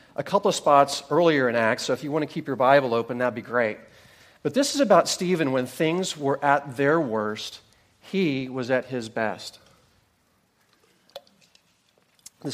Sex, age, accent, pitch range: male, 40-59, American, 115-155 Hz